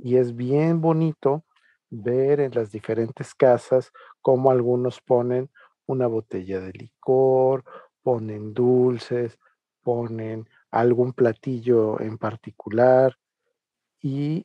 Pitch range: 120-145 Hz